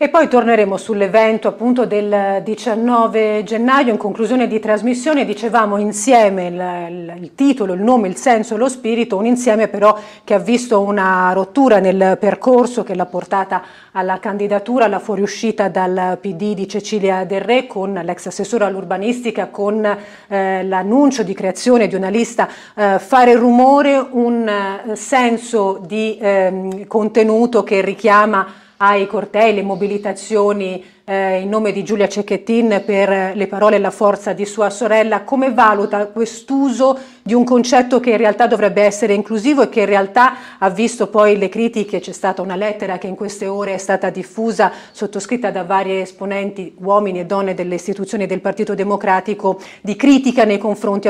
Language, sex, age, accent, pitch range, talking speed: Italian, female, 40-59, native, 195-225 Hz, 160 wpm